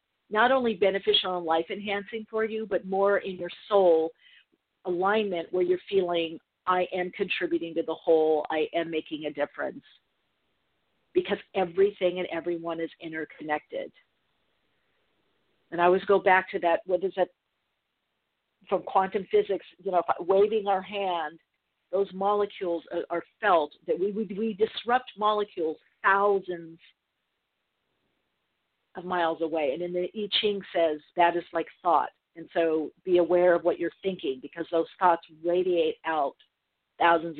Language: English